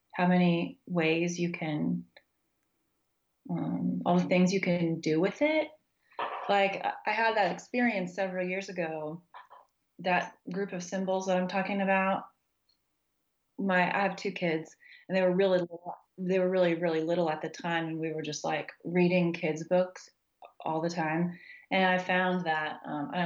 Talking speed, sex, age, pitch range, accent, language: 165 wpm, female, 30-49, 165-195 Hz, American, English